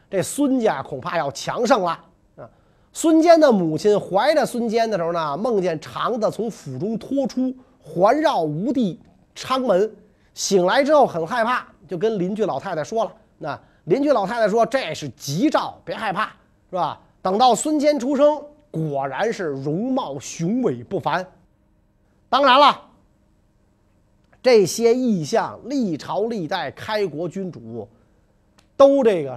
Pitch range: 155-245 Hz